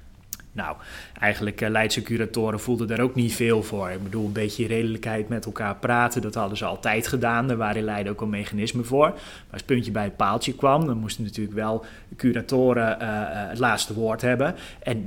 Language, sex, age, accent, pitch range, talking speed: Dutch, male, 30-49, Dutch, 115-135 Hz, 200 wpm